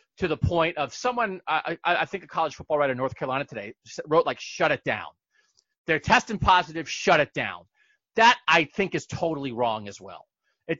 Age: 40-59